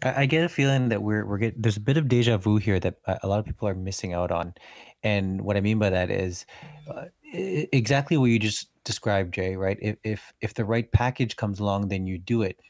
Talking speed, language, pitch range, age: 240 wpm, English, 100-115 Hz, 20-39